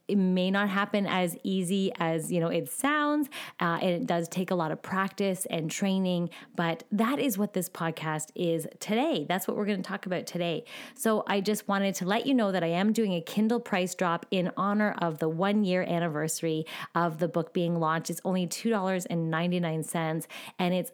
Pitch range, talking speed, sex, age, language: 165-205 Hz, 205 wpm, female, 20-39, English